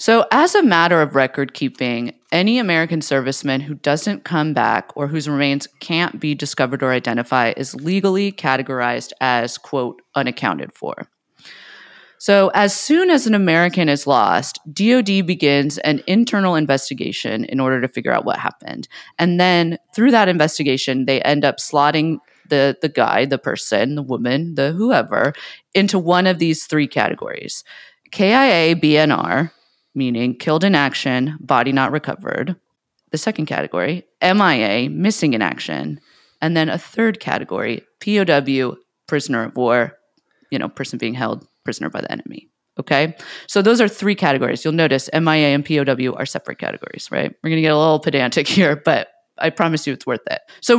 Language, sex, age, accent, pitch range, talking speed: English, female, 30-49, American, 140-185 Hz, 165 wpm